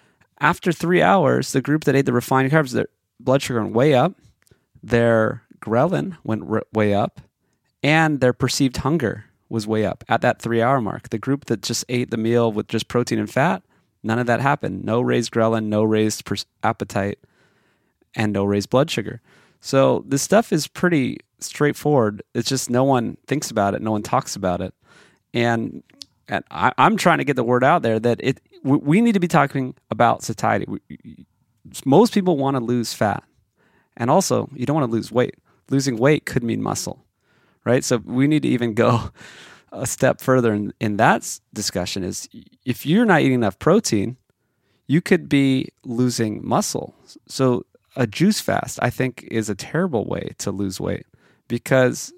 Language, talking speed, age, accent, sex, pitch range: English, 180 wpm, 30-49, American, male, 115-140 Hz